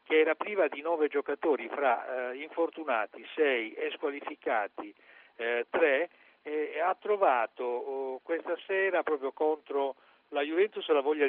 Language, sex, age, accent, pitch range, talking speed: Italian, male, 60-79, native, 145-240 Hz, 140 wpm